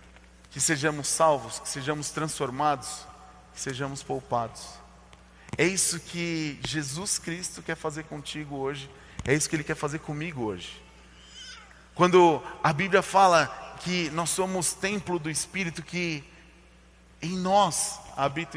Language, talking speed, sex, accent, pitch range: Portuguese, 130 wpm, male, Brazilian, 110-175 Hz